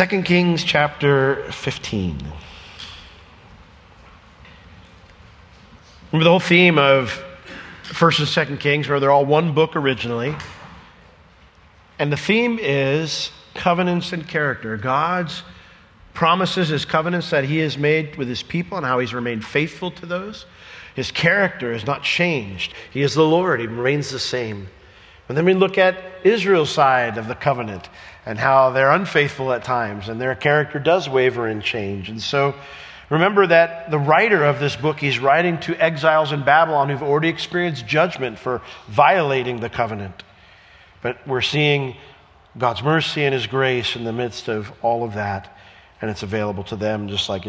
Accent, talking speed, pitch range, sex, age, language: American, 160 wpm, 110-160 Hz, male, 50-69, English